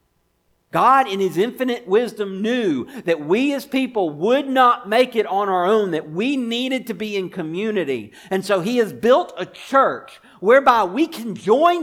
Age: 50-69